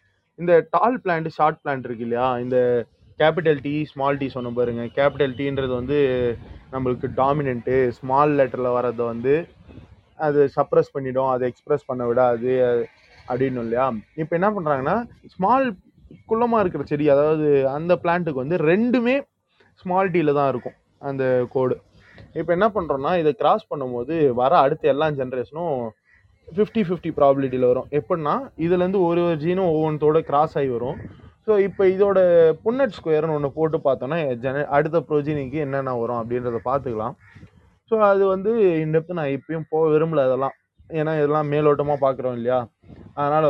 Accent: native